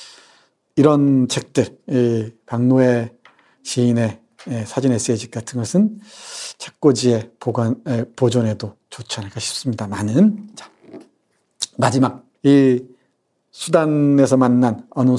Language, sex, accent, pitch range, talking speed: English, male, Korean, 120-145 Hz, 80 wpm